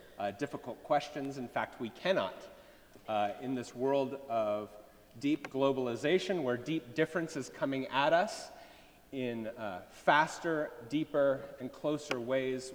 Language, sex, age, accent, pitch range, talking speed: English, male, 30-49, American, 90-135 Hz, 130 wpm